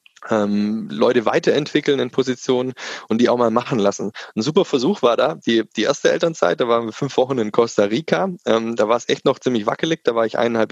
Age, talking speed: 20-39, 220 wpm